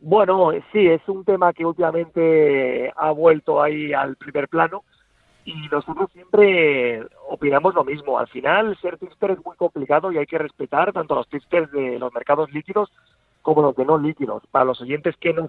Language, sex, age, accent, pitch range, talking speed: Spanish, male, 40-59, Spanish, 135-170 Hz, 180 wpm